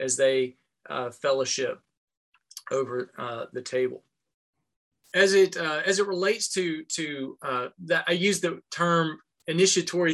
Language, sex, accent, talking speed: English, male, American, 135 wpm